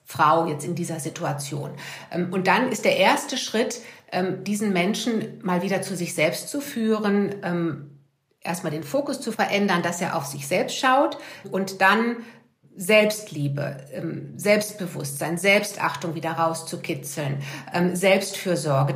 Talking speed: 125 wpm